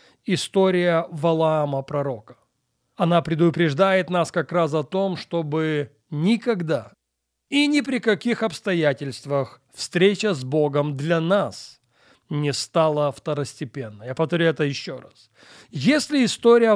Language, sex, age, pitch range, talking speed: Russian, male, 30-49, 140-185 Hz, 115 wpm